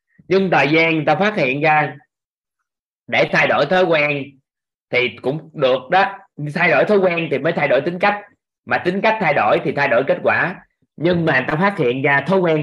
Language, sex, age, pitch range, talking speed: Vietnamese, male, 20-39, 130-180 Hz, 220 wpm